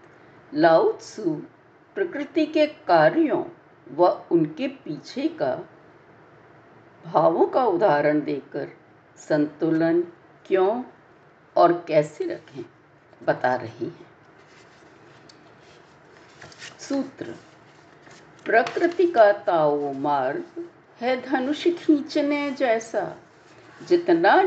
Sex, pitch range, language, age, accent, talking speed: female, 205-340 Hz, Hindi, 50-69, native, 75 wpm